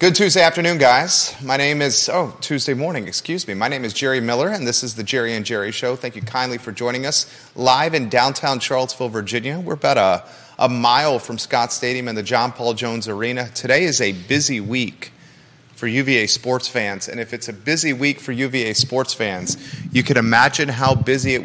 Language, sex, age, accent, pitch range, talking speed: English, male, 30-49, American, 120-140 Hz, 210 wpm